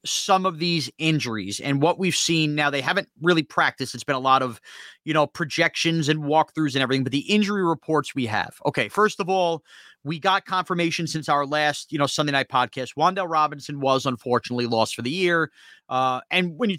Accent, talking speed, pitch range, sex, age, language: American, 205 wpm, 140-210 Hz, male, 30-49, English